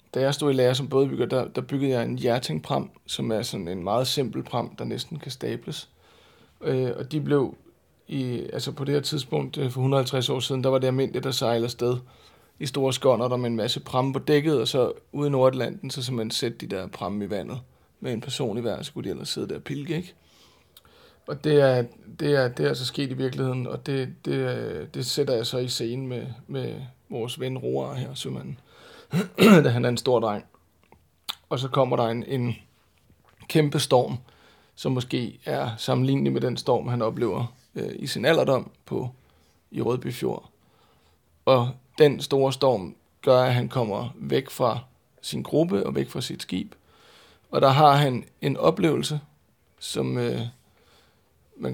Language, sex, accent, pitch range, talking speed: Danish, male, native, 115-140 Hz, 190 wpm